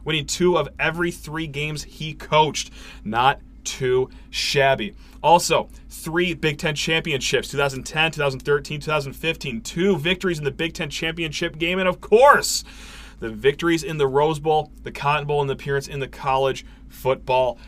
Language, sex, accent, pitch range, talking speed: English, male, American, 145-180 Hz, 155 wpm